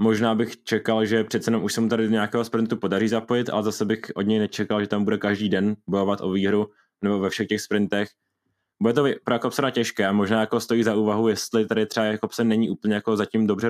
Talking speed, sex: 240 wpm, male